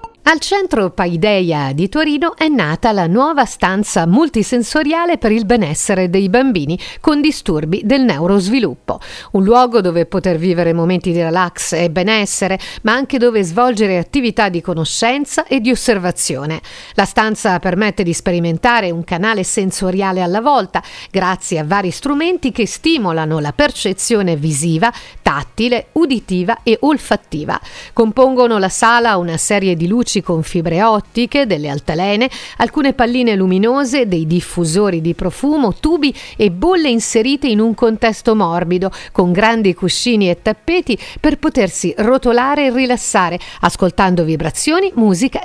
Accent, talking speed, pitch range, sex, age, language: native, 135 wpm, 180-255 Hz, female, 50-69, Italian